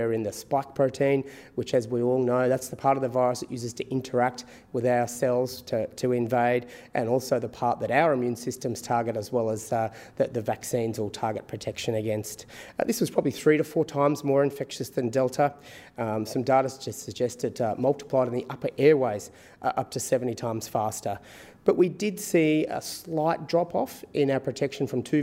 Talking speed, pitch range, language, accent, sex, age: 205 wpm, 120-140 Hz, English, Australian, male, 30-49